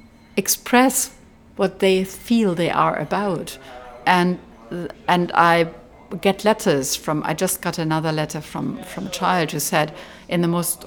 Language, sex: Swedish, female